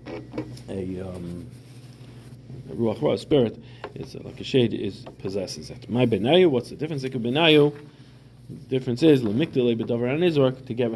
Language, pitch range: English, 105-130 Hz